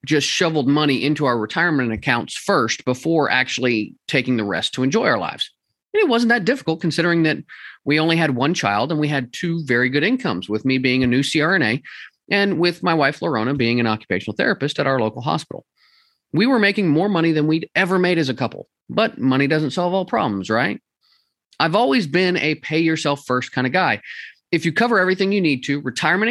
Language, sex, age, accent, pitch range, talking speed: English, male, 30-49, American, 130-185 Hz, 210 wpm